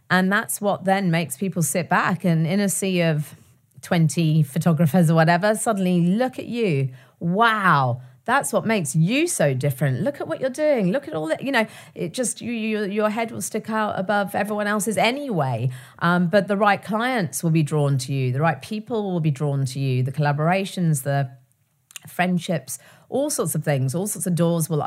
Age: 40-59